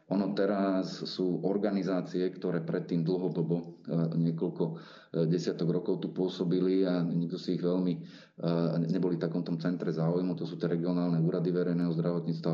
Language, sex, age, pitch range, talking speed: Slovak, male, 40-59, 85-90 Hz, 155 wpm